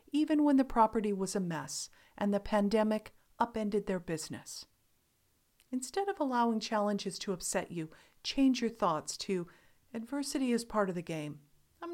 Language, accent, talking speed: English, American, 155 wpm